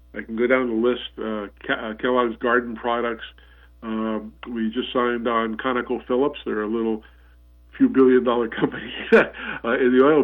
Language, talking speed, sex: English, 160 wpm, male